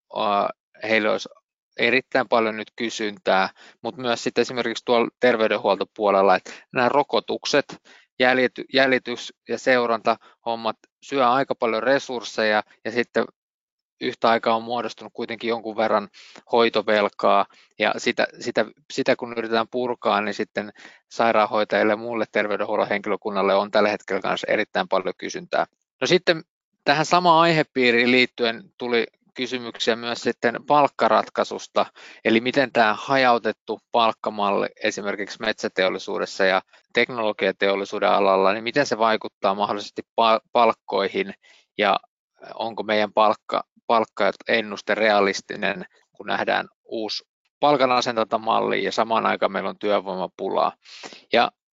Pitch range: 105-125 Hz